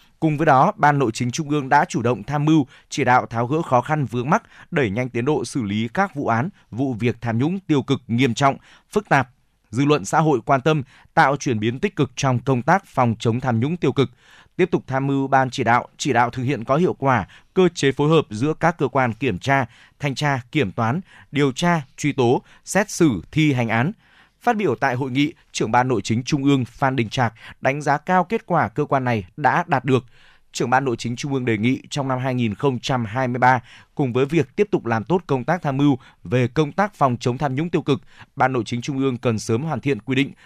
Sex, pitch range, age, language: male, 120-150 Hz, 20-39, Vietnamese